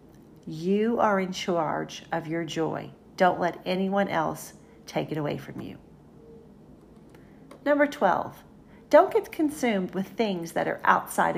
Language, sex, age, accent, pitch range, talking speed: English, female, 40-59, American, 170-235 Hz, 135 wpm